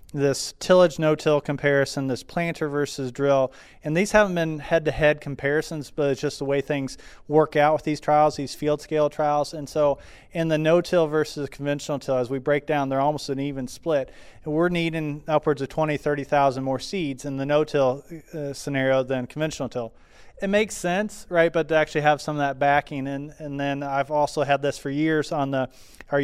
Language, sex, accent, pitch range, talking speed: English, male, American, 140-155 Hz, 205 wpm